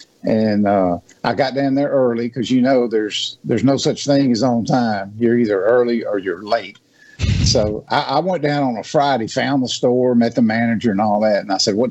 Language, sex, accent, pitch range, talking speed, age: English, male, American, 115-135 Hz, 225 wpm, 50-69